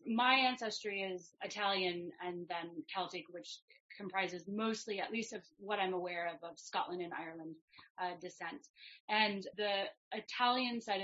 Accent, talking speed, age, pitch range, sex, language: American, 145 wpm, 30-49, 180-210 Hz, female, English